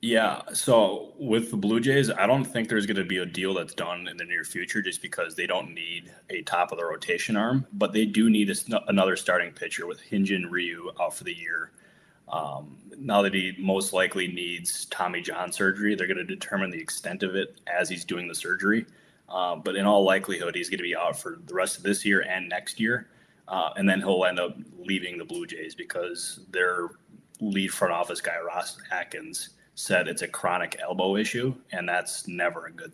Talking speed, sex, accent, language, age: 215 wpm, male, American, English, 20-39